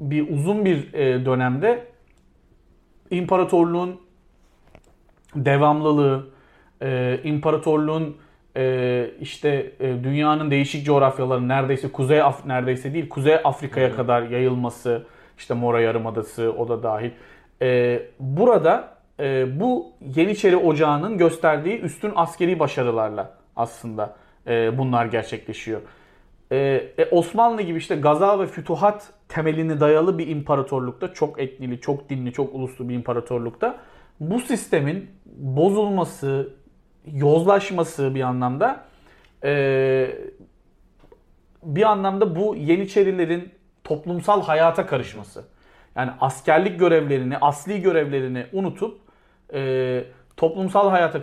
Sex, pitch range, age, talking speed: male, 130-170 Hz, 40-59, 100 wpm